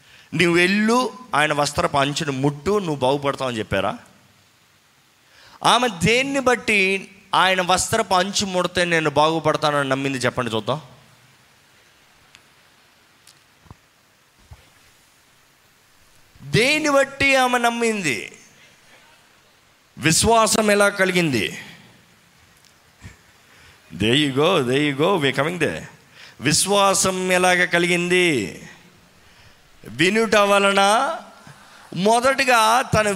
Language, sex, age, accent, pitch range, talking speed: Telugu, male, 20-39, native, 145-215 Hz, 75 wpm